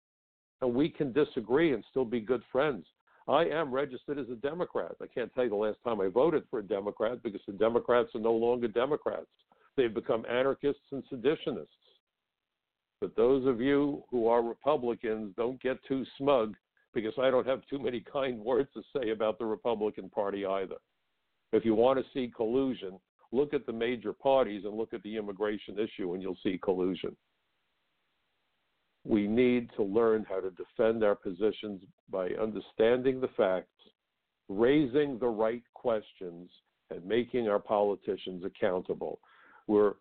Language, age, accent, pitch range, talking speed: English, 60-79, American, 105-130 Hz, 165 wpm